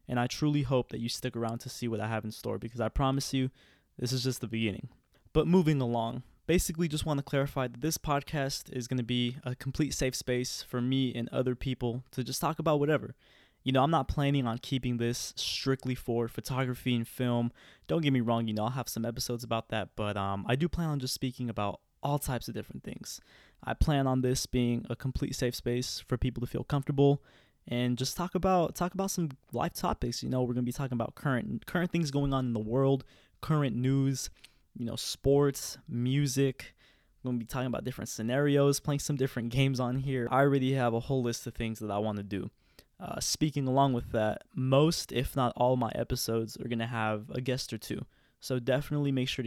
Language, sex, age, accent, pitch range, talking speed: English, male, 20-39, American, 120-140 Hz, 225 wpm